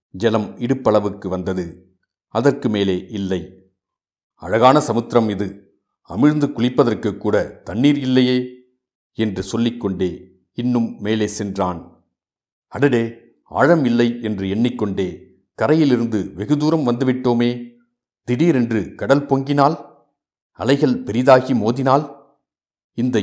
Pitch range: 100-130 Hz